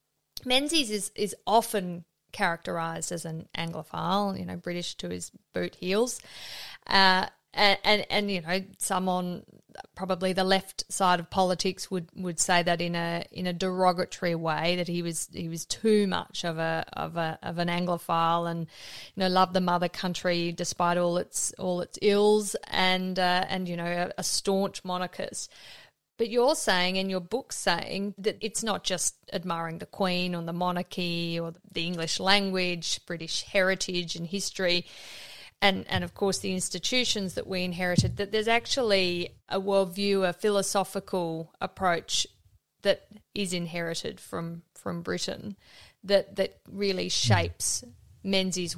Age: 30-49